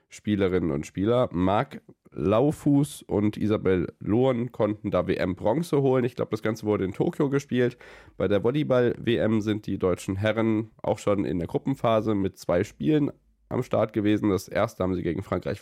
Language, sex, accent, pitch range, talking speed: German, male, German, 95-120 Hz, 170 wpm